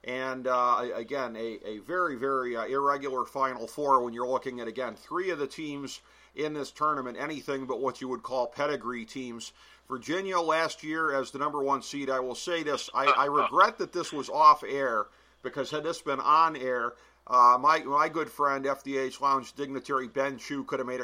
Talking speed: 200 wpm